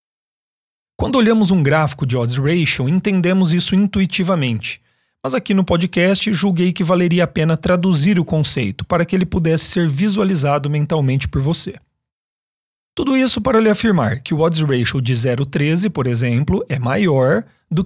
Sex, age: male, 40-59